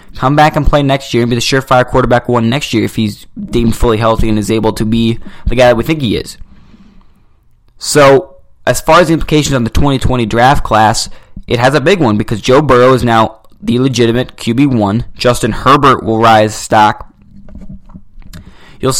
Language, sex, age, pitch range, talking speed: English, male, 20-39, 110-130 Hz, 195 wpm